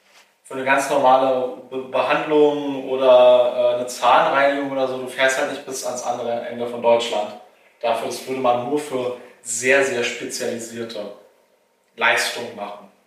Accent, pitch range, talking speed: German, 125-145 Hz, 140 wpm